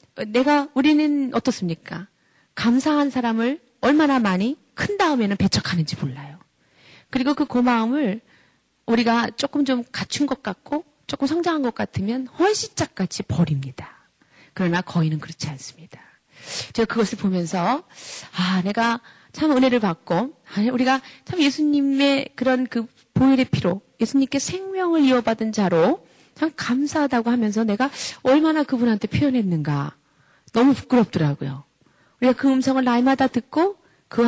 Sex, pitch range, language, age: female, 195-275 Hz, Korean, 30-49